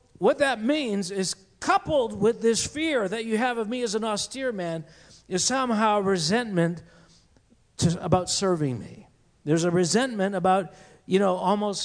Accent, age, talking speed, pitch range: American, 50-69, 155 wpm, 170-225 Hz